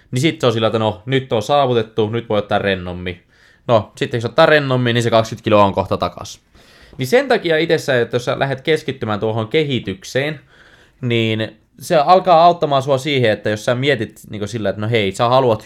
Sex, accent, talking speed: male, native, 210 wpm